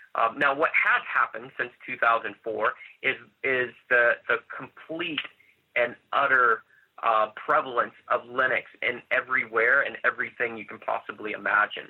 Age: 30-49